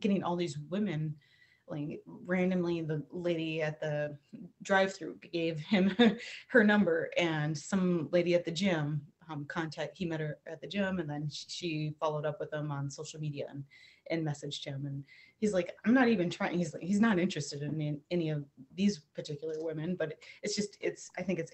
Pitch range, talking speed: 150-205 Hz, 190 wpm